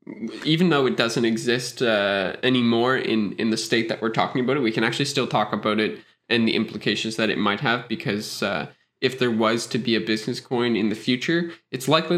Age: 20-39